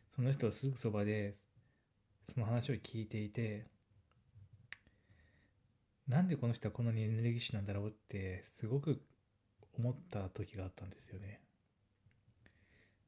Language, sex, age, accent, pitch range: Japanese, male, 20-39, native, 105-125 Hz